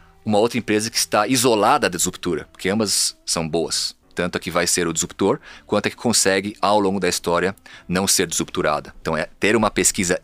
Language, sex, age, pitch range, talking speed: Portuguese, male, 30-49, 80-95 Hz, 205 wpm